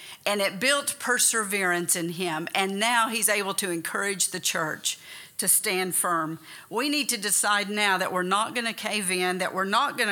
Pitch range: 190-250 Hz